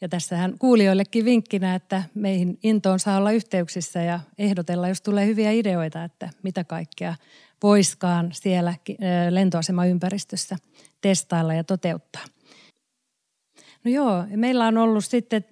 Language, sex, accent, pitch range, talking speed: Finnish, female, native, 170-200 Hz, 125 wpm